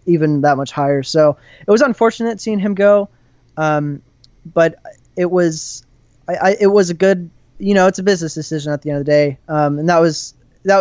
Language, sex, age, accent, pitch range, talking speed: English, male, 20-39, American, 140-175 Hz, 210 wpm